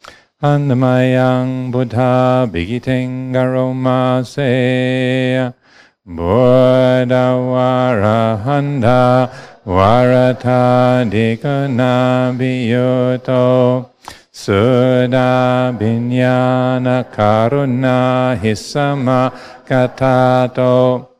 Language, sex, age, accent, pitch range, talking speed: English, male, 50-69, American, 125-130 Hz, 40 wpm